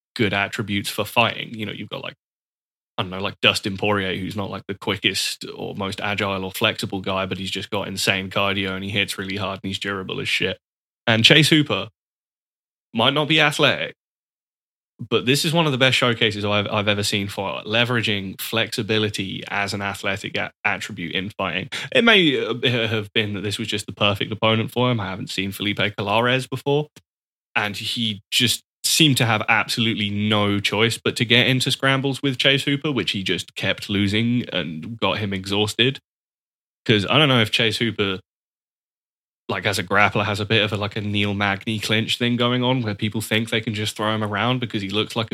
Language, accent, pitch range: English, British, 100-120 Hz